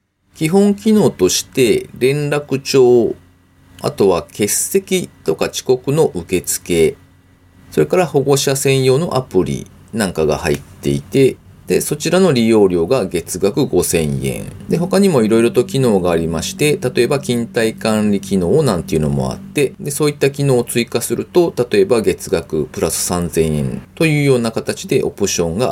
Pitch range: 95-145 Hz